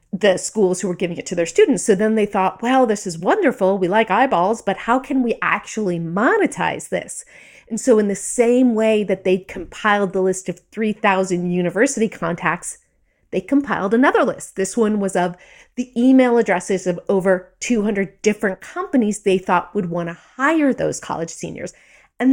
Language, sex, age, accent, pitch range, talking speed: English, female, 30-49, American, 190-245 Hz, 185 wpm